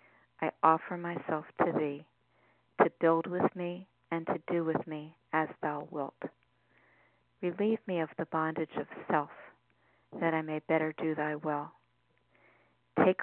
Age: 50-69